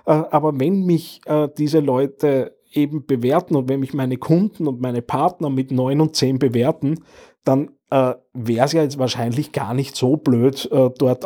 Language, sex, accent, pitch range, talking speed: English, male, Austrian, 120-145 Hz, 180 wpm